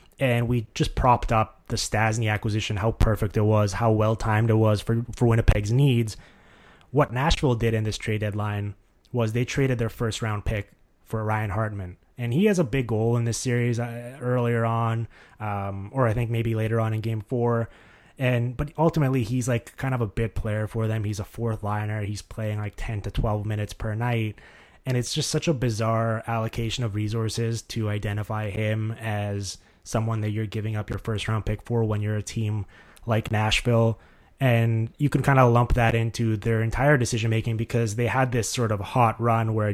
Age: 20-39